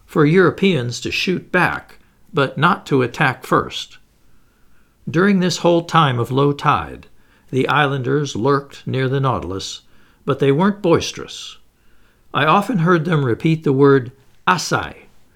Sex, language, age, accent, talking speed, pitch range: male, English, 60-79, American, 135 wpm, 125-160 Hz